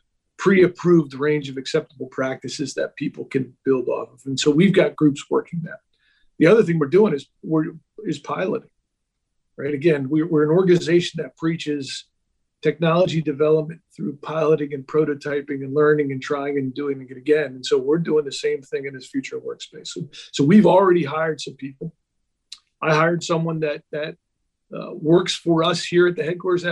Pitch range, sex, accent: 145-170 Hz, male, American